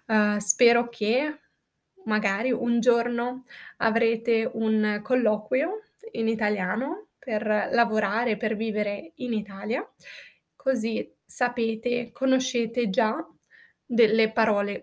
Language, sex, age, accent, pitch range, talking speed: Italian, female, 20-39, native, 215-250 Hz, 95 wpm